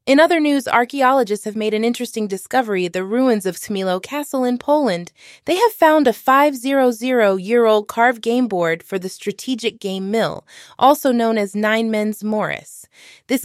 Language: English